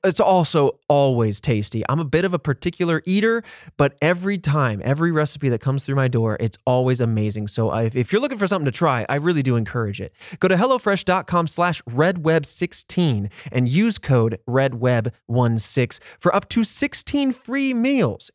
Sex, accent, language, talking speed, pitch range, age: male, American, English, 170 wpm, 125-185 Hz, 20-39